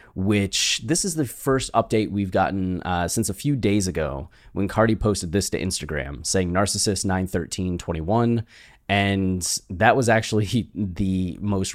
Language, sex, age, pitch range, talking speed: English, male, 30-49, 90-110 Hz, 150 wpm